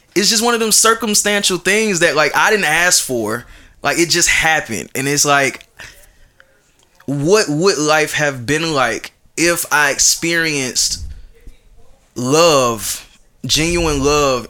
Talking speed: 135 wpm